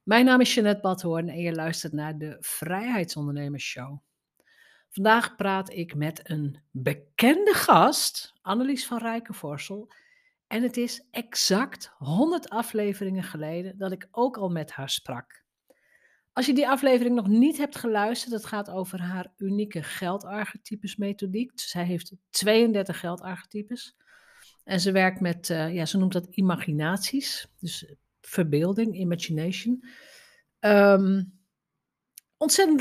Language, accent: Dutch, Dutch